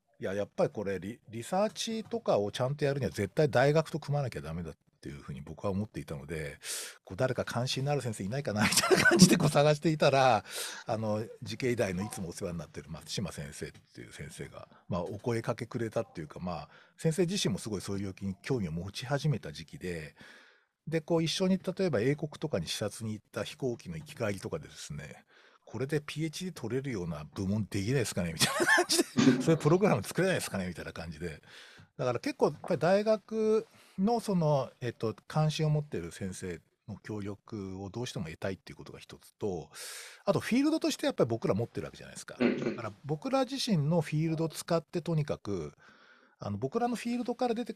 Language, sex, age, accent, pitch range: Japanese, male, 50-69, native, 105-170 Hz